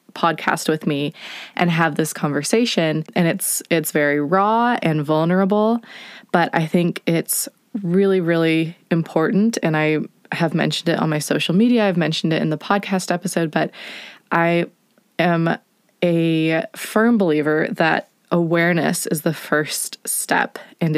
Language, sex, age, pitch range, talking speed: English, female, 20-39, 160-205 Hz, 145 wpm